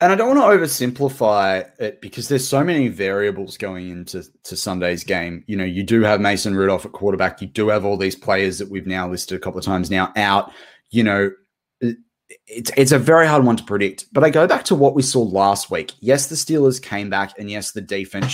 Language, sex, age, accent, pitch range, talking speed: English, male, 20-39, Australian, 95-125 Hz, 235 wpm